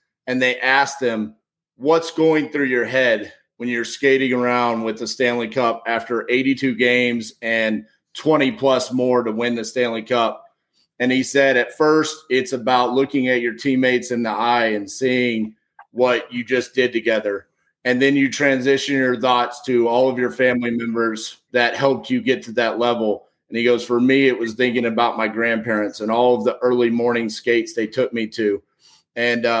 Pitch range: 120-135 Hz